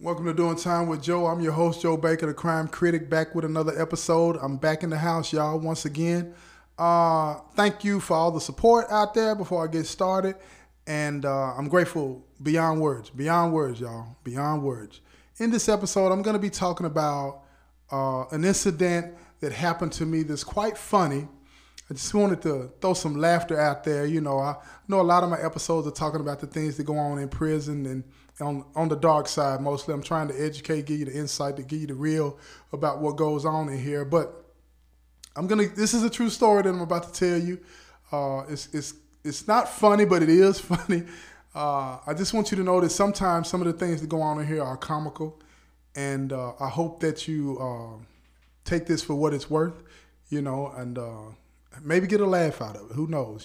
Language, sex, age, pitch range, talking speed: English, male, 20-39, 145-175 Hz, 215 wpm